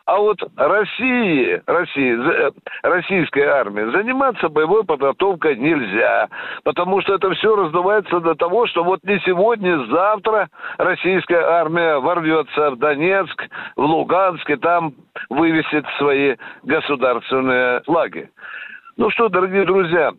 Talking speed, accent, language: 120 wpm, native, Russian